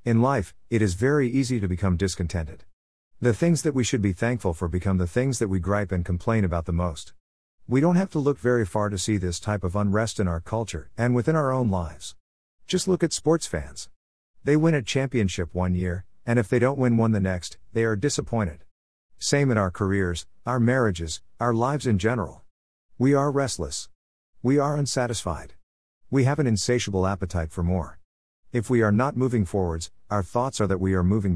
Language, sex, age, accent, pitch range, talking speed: English, male, 50-69, American, 85-120 Hz, 205 wpm